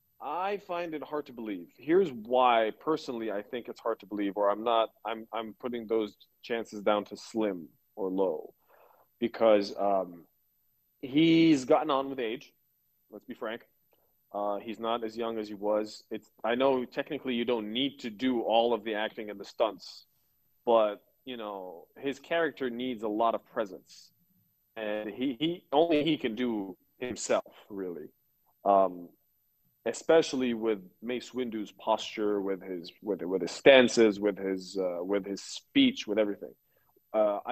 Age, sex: 20-39, male